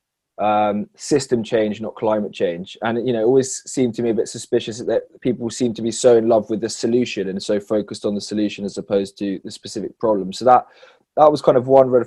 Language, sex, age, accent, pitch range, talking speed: English, male, 20-39, British, 105-120 Hz, 235 wpm